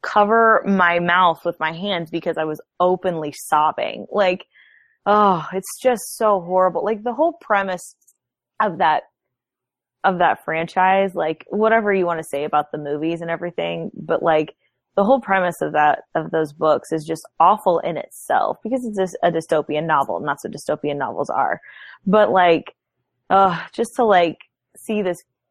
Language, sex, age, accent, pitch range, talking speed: English, female, 20-39, American, 160-205 Hz, 165 wpm